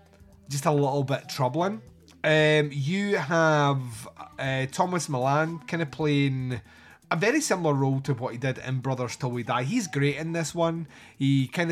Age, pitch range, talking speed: 30-49, 125-150 Hz, 175 wpm